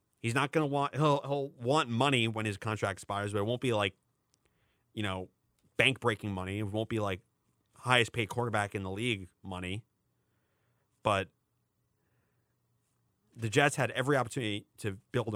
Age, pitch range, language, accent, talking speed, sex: 30-49, 110-140 Hz, English, American, 165 wpm, male